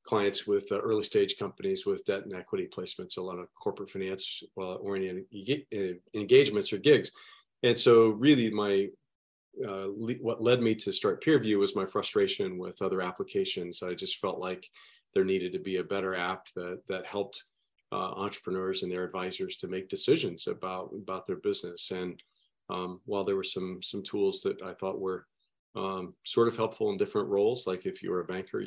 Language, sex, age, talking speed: English, male, 40-59, 190 wpm